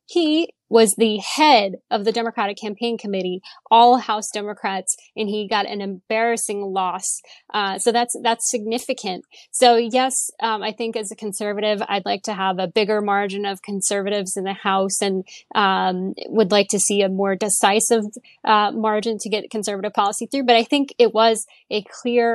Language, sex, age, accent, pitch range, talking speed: English, female, 10-29, American, 200-225 Hz, 175 wpm